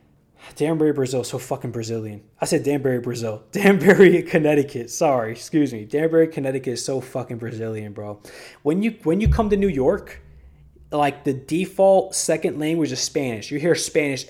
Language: English